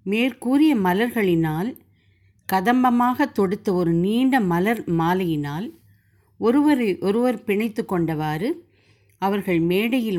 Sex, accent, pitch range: female, native, 165-235 Hz